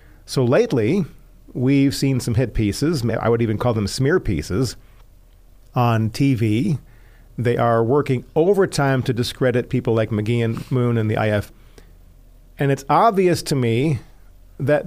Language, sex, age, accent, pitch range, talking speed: English, male, 40-59, American, 110-145 Hz, 145 wpm